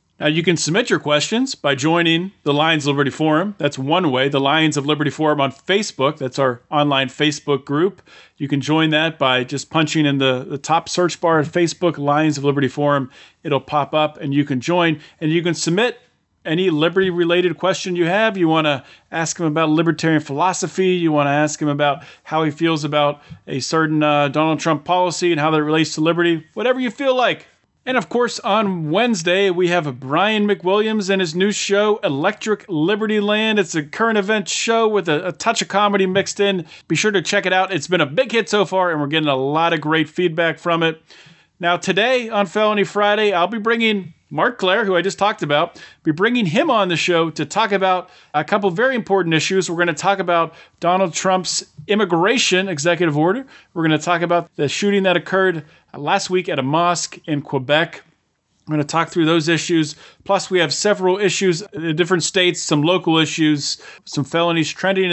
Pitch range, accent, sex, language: 150-190 Hz, American, male, English